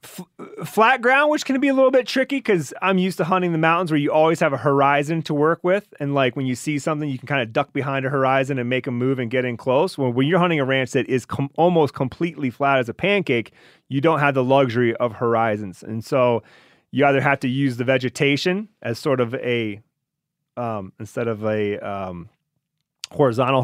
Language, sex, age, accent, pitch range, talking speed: English, male, 30-49, American, 120-160 Hz, 220 wpm